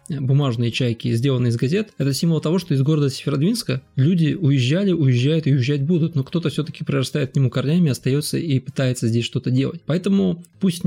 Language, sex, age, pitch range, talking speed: Russian, male, 20-39, 130-155 Hz, 180 wpm